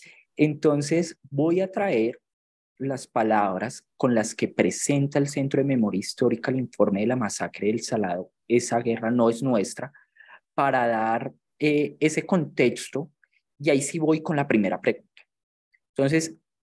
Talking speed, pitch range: 150 wpm, 115-150 Hz